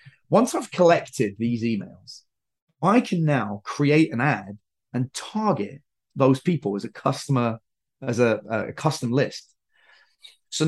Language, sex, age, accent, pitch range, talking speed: English, male, 30-49, British, 115-170 Hz, 135 wpm